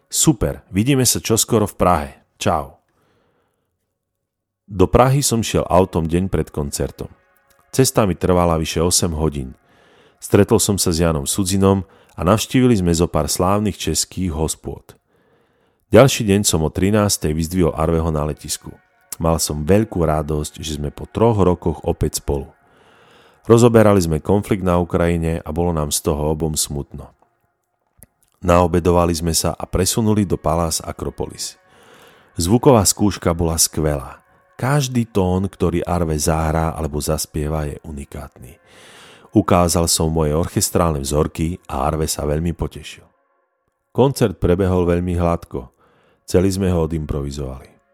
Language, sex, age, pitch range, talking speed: Slovak, male, 40-59, 80-100 Hz, 135 wpm